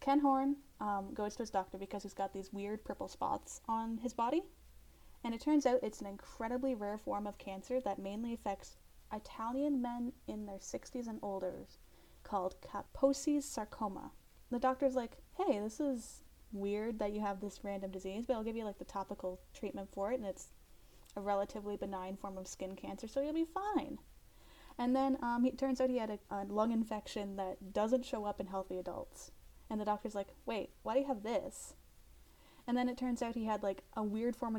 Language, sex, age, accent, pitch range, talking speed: English, female, 10-29, American, 200-255 Hz, 205 wpm